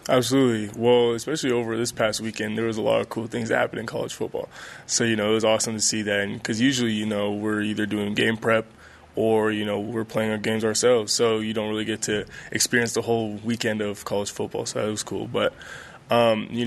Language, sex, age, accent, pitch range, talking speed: English, male, 20-39, American, 110-120 Hz, 235 wpm